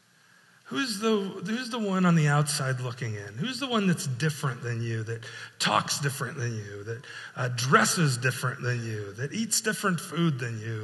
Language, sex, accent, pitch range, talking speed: English, male, American, 130-180 Hz, 185 wpm